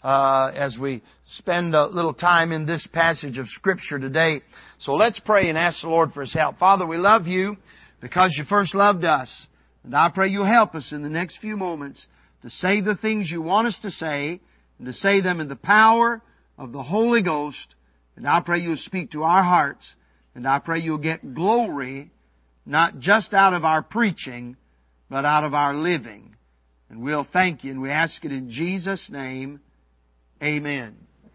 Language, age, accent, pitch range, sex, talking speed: English, 50-69, American, 140-195 Hz, male, 190 wpm